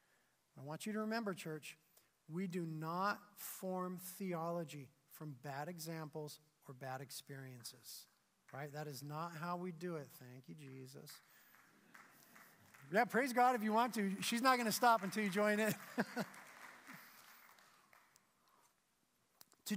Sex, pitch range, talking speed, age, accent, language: male, 175-230 Hz, 135 wpm, 40-59, American, English